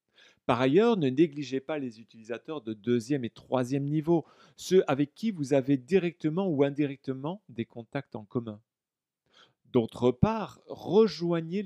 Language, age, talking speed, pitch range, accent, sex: French, 40-59, 140 wpm, 115-155 Hz, French, male